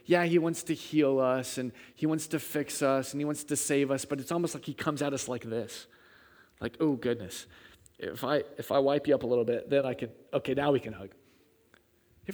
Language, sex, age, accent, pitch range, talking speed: English, male, 30-49, American, 130-175 Hz, 245 wpm